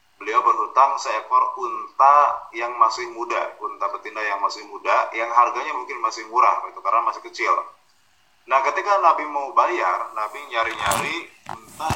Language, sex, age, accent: Indonesian, male, 20-39, native